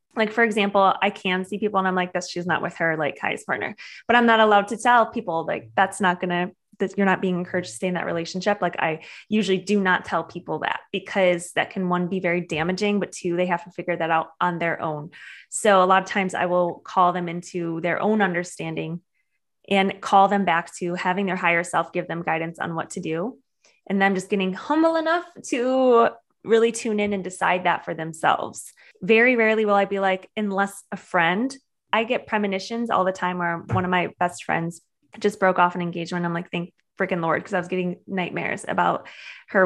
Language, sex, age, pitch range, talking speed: English, female, 20-39, 175-205 Hz, 225 wpm